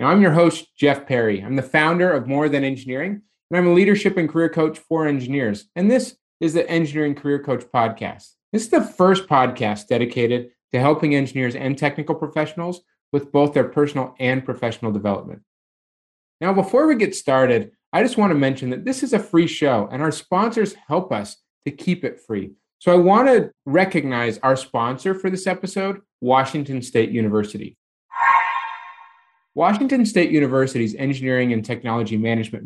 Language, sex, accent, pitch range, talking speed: English, male, American, 125-175 Hz, 175 wpm